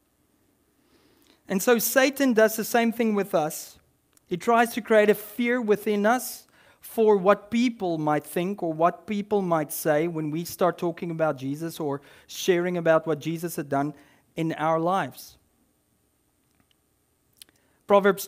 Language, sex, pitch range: English, male, 165-210 Hz